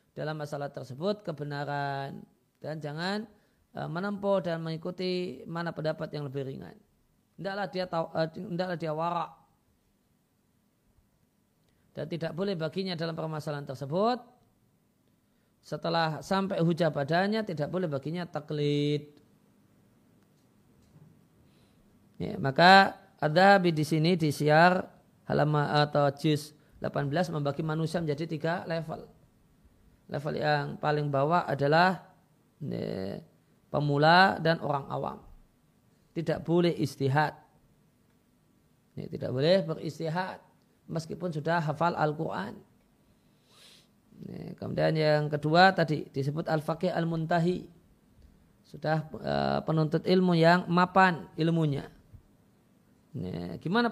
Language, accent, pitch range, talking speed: Indonesian, native, 150-180 Hz, 90 wpm